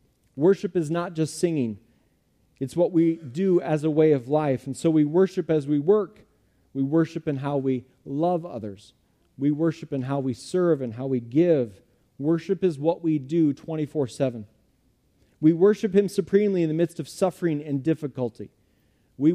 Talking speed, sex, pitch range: 175 wpm, male, 135-170 Hz